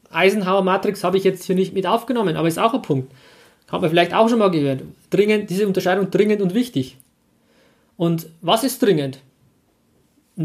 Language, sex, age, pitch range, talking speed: German, male, 30-49, 180-235 Hz, 180 wpm